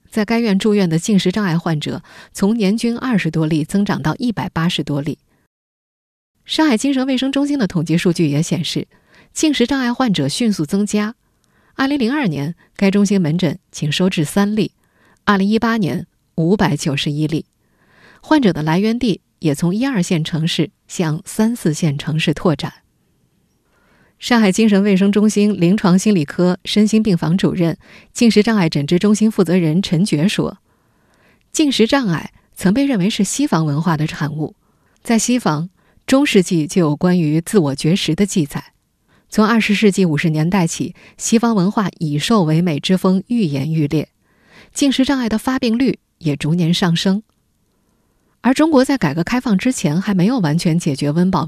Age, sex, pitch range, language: 20-39, female, 160-220 Hz, Chinese